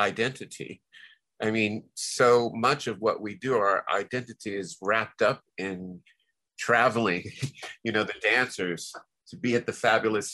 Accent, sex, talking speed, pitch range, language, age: American, male, 145 wpm, 100-125 Hz, English, 50-69